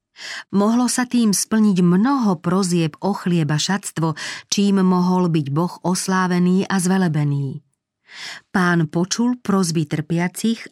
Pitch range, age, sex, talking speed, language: 155-195 Hz, 40-59, female, 110 wpm, Slovak